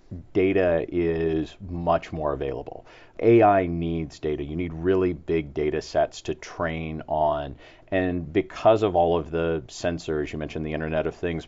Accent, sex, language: American, male, English